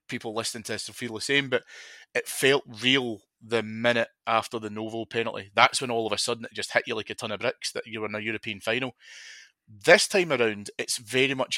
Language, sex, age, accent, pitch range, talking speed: English, male, 20-39, British, 110-120 Hz, 240 wpm